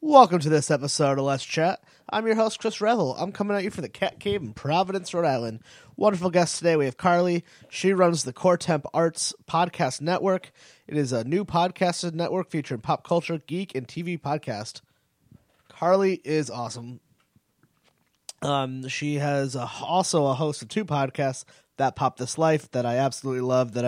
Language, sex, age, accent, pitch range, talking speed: English, male, 30-49, American, 125-165 Hz, 185 wpm